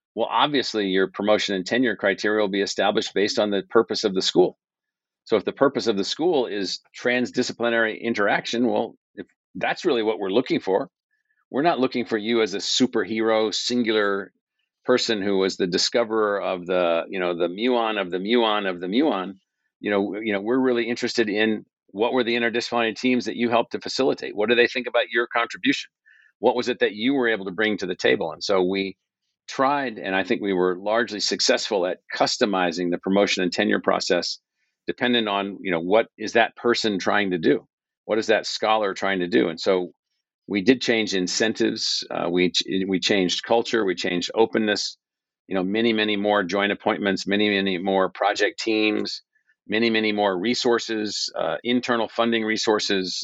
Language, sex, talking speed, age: English, male, 190 wpm, 50-69